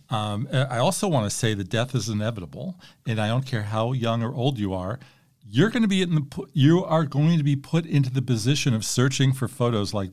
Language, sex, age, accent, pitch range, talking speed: English, male, 50-69, American, 110-140 Hz, 235 wpm